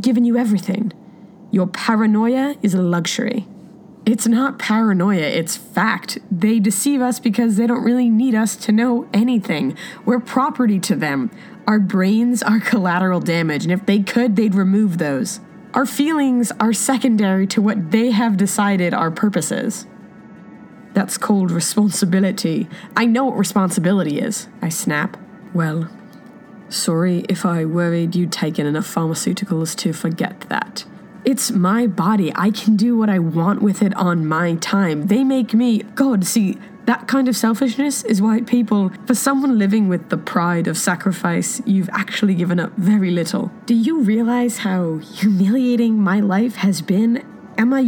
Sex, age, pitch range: female, 20-39, 190-235 Hz